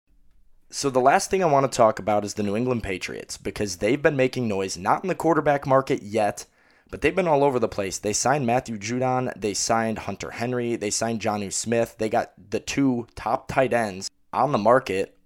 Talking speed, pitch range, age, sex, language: 210 wpm, 100-120 Hz, 20-39, male, English